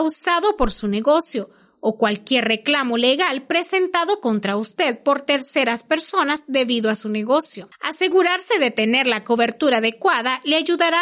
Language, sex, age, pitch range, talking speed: Spanish, female, 30-49, 230-330 Hz, 140 wpm